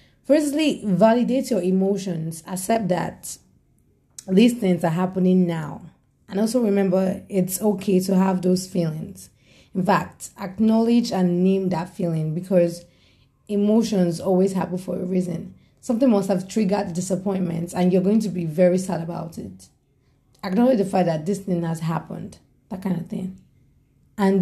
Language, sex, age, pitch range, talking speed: English, female, 30-49, 170-200 Hz, 150 wpm